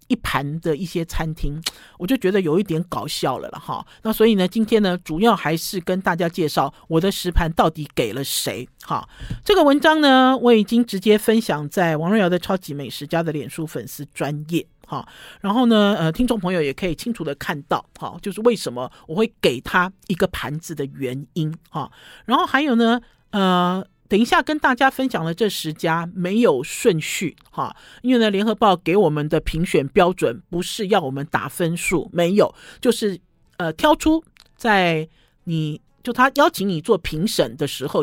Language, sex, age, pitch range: Chinese, male, 50-69, 160-220 Hz